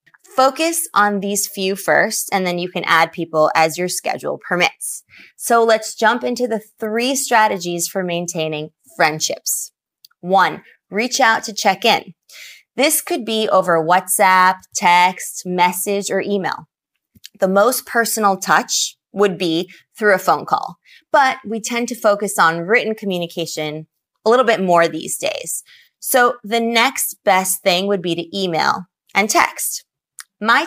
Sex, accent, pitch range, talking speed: female, American, 175-230 Hz, 150 wpm